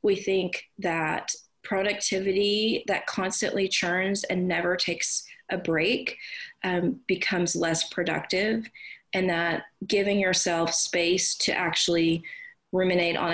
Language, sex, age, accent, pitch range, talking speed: English, female, 30-49, American, 165-195 Hz, 115 wpm